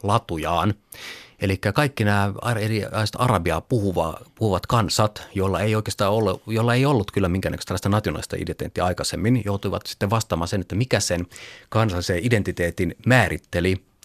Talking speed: 145 wpm